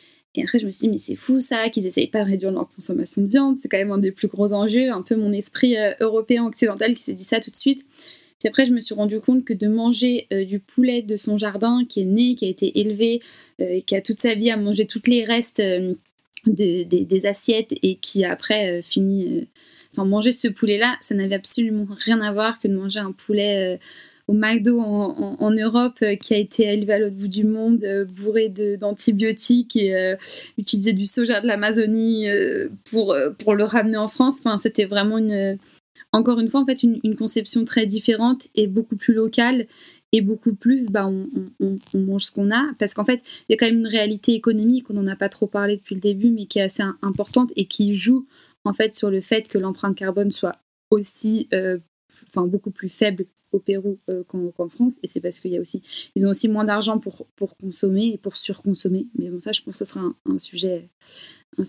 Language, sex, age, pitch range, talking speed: French, female, 20-39, 200-235 Hz, 240 wpm